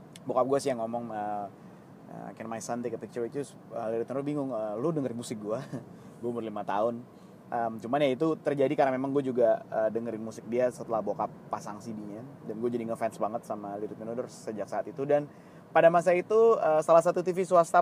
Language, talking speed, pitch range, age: Indonesian, 210 wpm, 120-150 Hz, 20-39